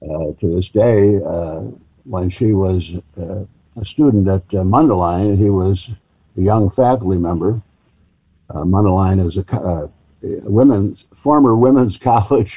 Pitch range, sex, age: 90-115 Hz, male, 60-79